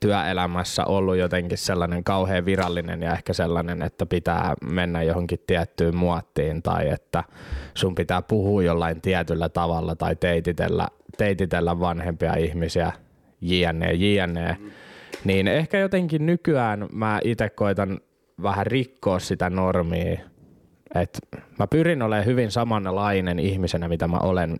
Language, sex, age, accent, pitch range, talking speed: Finnish, male, 20-39, native, 90-110 Hz, 125 wpm